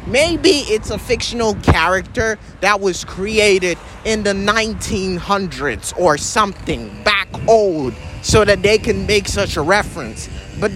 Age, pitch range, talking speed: 30-49, 160-210 Hz, 135 wpm